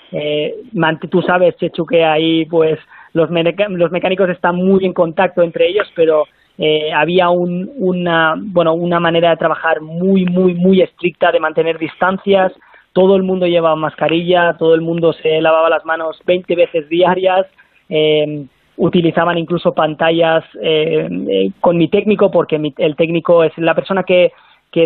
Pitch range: 160-185 Hz